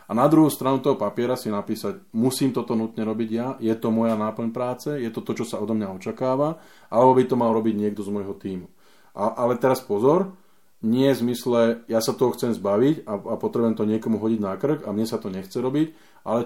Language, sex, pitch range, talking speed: Slovak, male, 100-120 Hz, 225 wpm